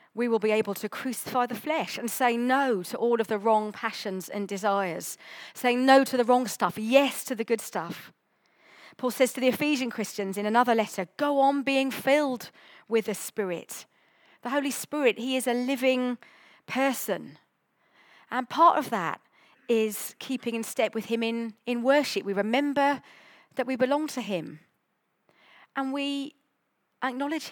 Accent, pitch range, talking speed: British, 205-260 Hz, 170 wpm